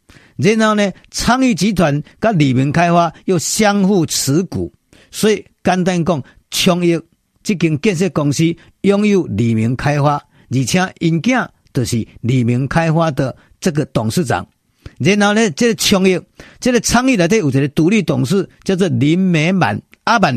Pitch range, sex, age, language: 135-200 Hz, male, 50-69, Chinese